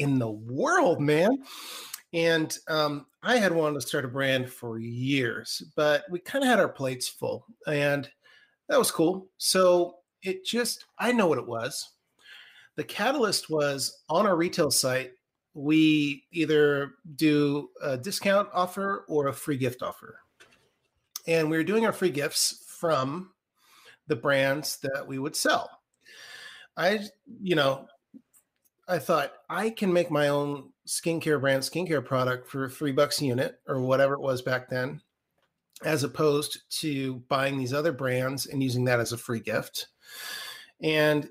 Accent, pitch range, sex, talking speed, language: American, 135-165 Hz, male, 155 wpm, English